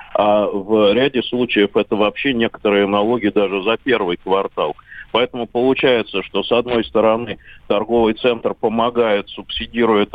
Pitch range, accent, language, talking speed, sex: 105-120 Hz, native, Russian, 130 wpm, male